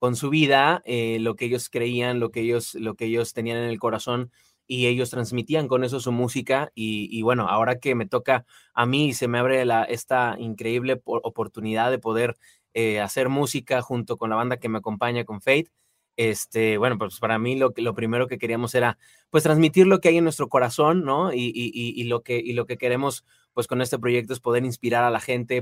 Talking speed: 225 wpm